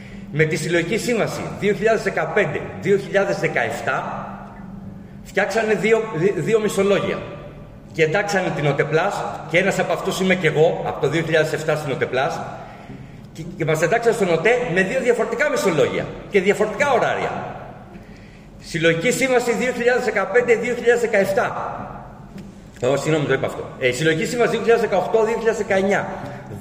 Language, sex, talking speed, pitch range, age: Greek, male, 115 wpm, 165-220 Hz, 40-59